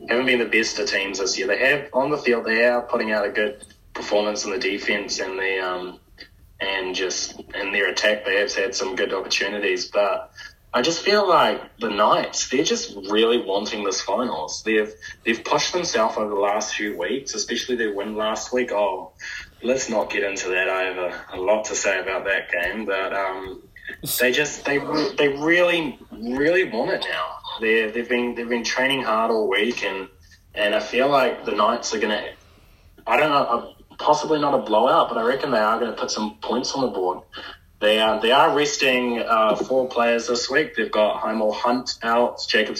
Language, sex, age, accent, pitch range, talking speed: English, male, 20-39, Australian, 100-125 Hz, 200 wpm